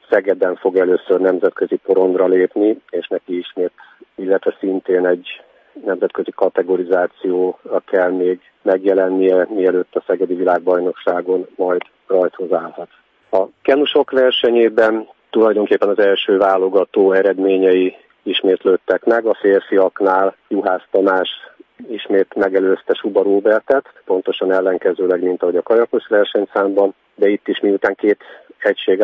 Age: 50-69